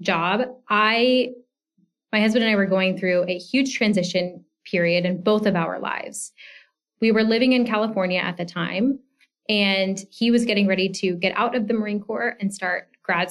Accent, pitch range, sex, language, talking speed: American, 195-245 Hz, female, English, 185 wpm